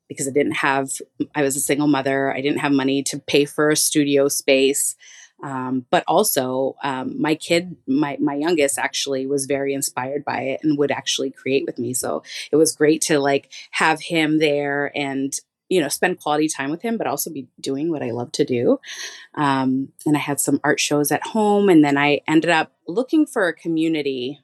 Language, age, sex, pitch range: English, 30-49, female, 135-155 Hz